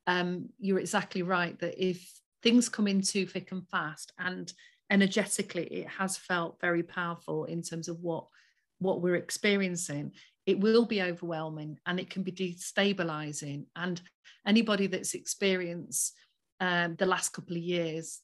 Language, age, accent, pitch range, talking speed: English, 40-59, British, 180-210 Hz, 150 wpm